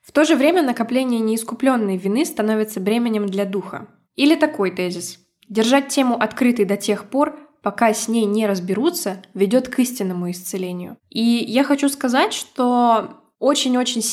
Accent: native